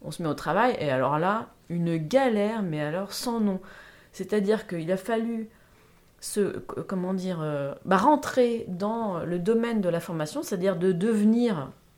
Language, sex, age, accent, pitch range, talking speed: French, female, 30-49, French, 170-230 Hz, 165 wpm